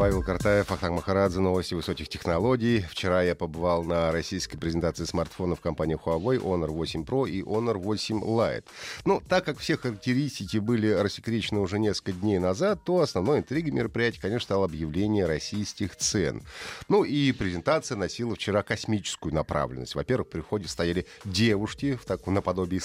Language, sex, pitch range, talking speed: Russian, male, 90-120 Hz, 145 wpm